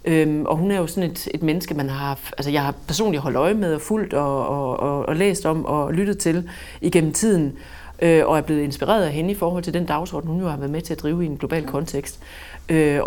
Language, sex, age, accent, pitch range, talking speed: Danish, female, 40-59, native, 150-185 Hz, 255 wpm